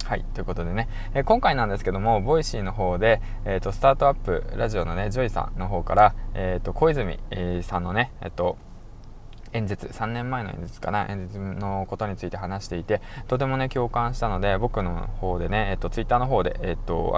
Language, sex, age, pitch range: Japanese, male, 20-39, 95-115 Hz